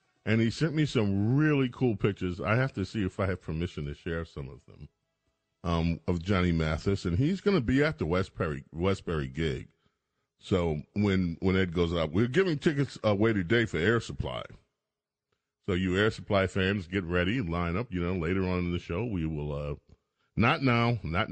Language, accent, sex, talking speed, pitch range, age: English, American, male, 205 wpm, 90-120 Hz, 40-59